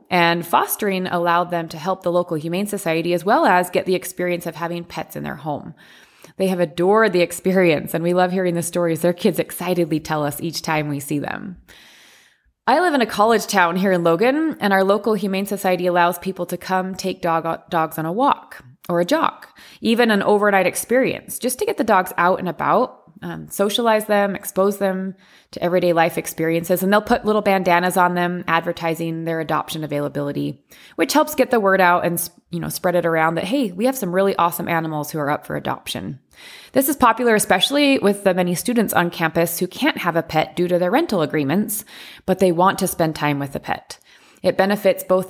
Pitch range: 170-200 Hz